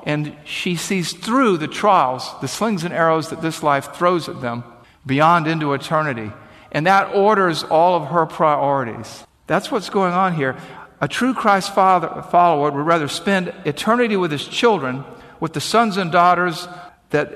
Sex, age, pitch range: male, 50-69, 145-180 Hz